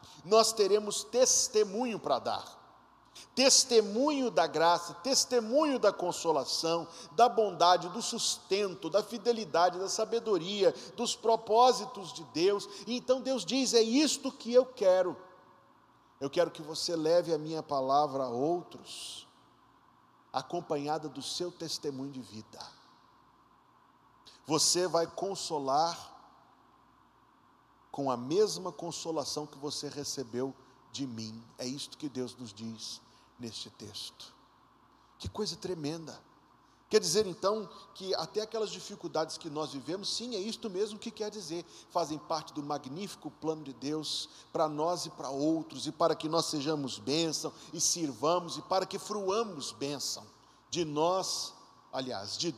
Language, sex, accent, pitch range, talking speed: Portuguese, male, Brazilian, 150-205 Hz, 135 wpm